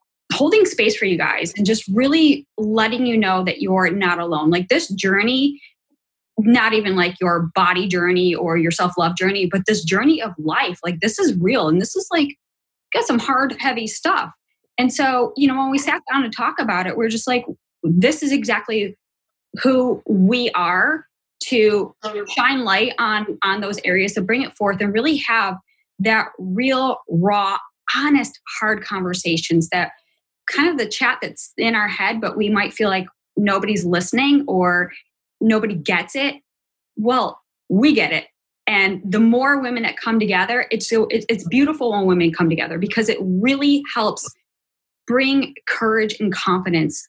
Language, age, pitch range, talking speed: English, 10-29, 185-250 Hz, 170 wpm